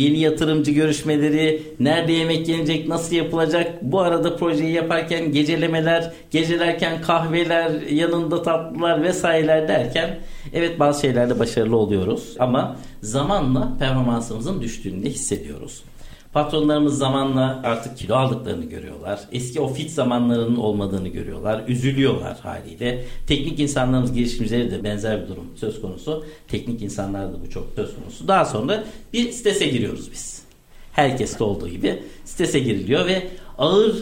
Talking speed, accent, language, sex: 130 wpm, native, Turkish, male